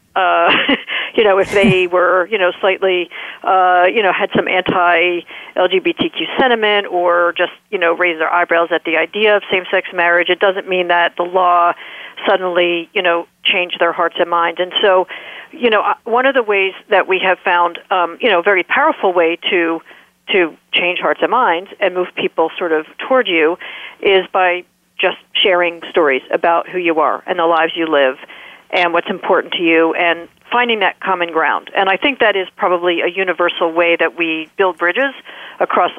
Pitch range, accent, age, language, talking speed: 175-215 Hz, American, 50-69, English, 200 wpm